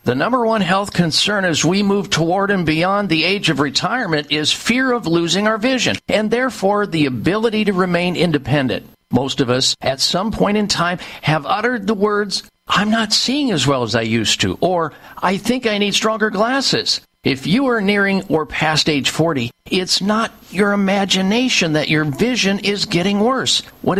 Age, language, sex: 50-69, English, male